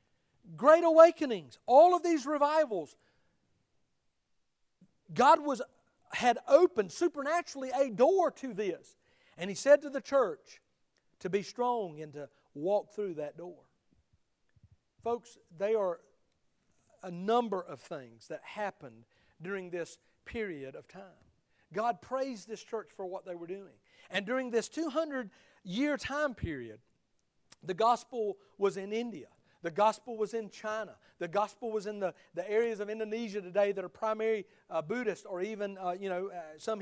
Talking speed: 150 wpm